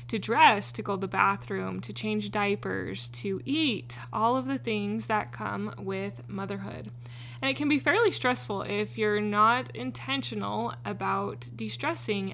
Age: 20-39